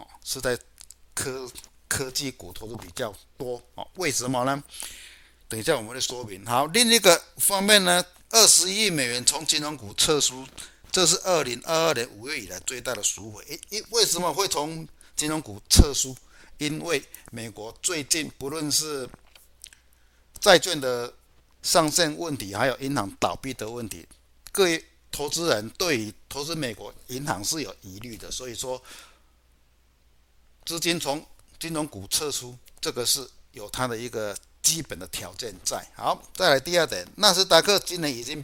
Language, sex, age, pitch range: Chinese, male, 60-79, 105-165 Hz